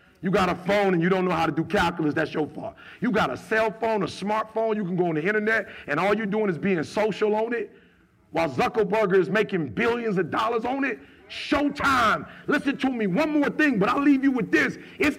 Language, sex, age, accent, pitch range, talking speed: English, male, 50-69, American, 190-305 Hz, 235 wpm